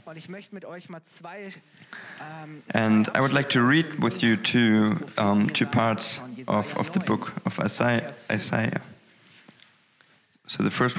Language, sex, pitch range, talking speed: German, male, 115-160 Hz, 115 wpm